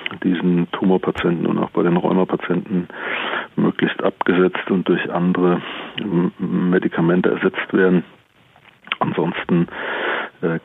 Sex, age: male, 40-59